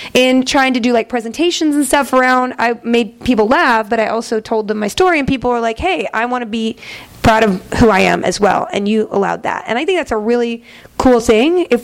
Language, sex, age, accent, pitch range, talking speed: English, female, 30-49, American, 220-280 Hz, 250 wpm